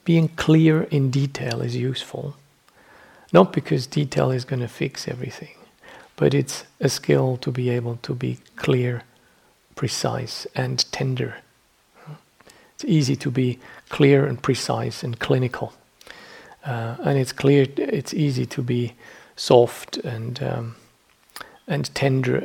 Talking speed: 130 wpm